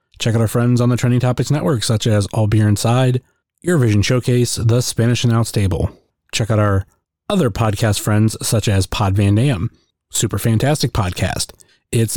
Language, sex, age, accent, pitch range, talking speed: English, male, 30-49, American, 105-130 Hz, 175 wpm